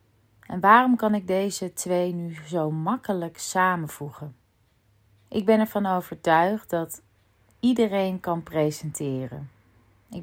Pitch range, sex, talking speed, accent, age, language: 150-185 Hz, female, 110 wpm, Dutch, 30-49, Dutch